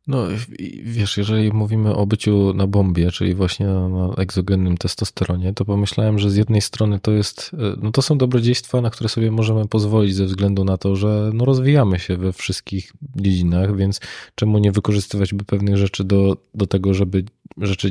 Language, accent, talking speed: Polish, native, 185 wpm